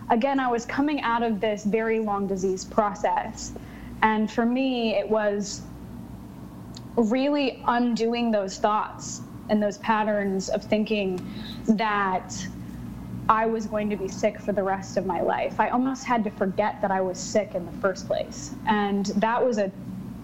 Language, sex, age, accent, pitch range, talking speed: English, female, 20-39, American, 190-230 Hz, 165 wpm